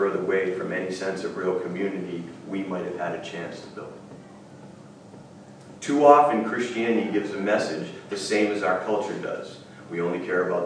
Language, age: English, 40-59